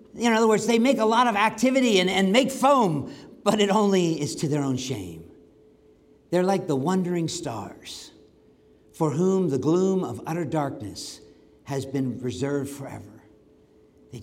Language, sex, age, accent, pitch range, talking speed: English, male, 50-69, American, 135-195 Hz, 160 wpm